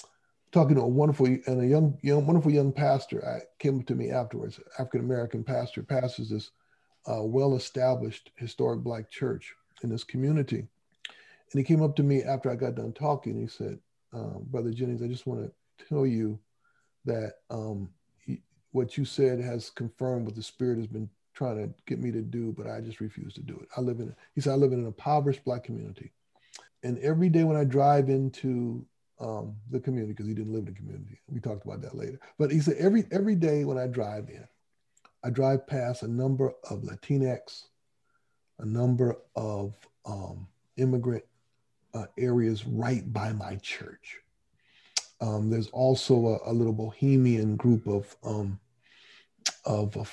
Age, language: 50-69, English